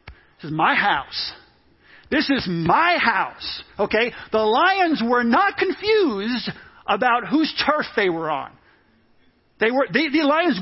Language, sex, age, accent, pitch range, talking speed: English, male, 50-69, American, 215-280 Hz, 135 wpm